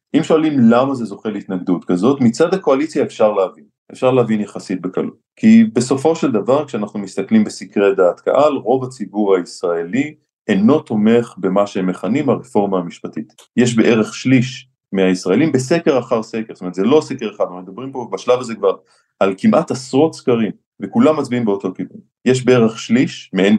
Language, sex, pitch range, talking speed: Hebrew, male, 100-145 Hz, 165 wpm